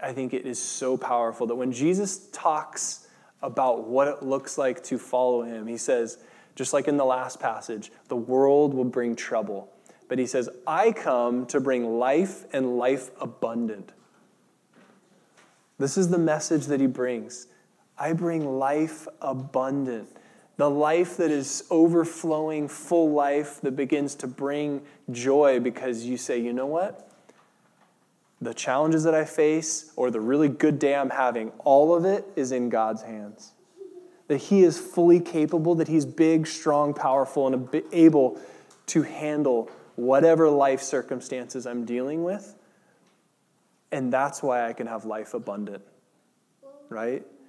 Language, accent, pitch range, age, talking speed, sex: English, American, 125-160 Hz, 20-39, 150 wpm, male